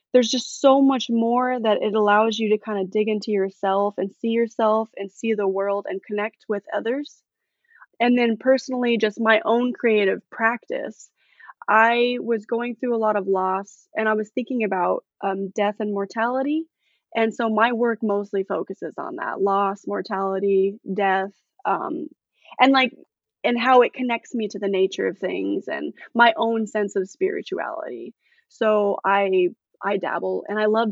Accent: American